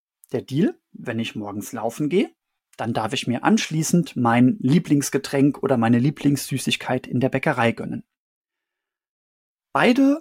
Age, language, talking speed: 30-49, German, 130 wpm